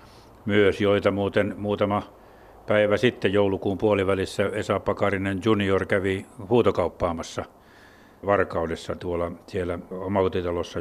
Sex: male